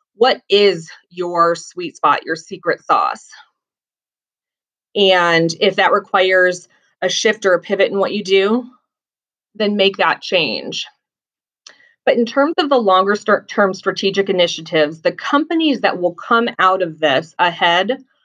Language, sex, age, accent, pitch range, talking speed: English, female, 30-49, American, 180-220 Hz, 140 wpm